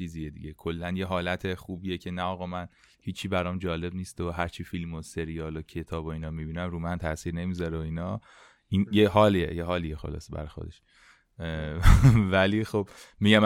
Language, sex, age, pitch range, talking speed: Persian, male, 20-39, 85-100 Hz, 180 wpm